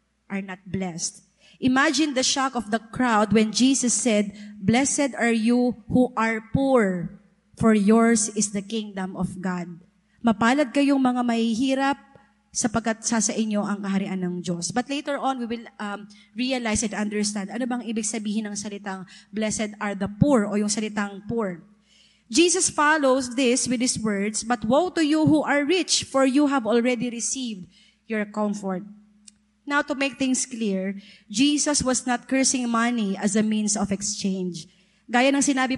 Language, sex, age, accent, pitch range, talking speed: Filipino, female, 20-39, native, 210-260 Hz, 165 wpm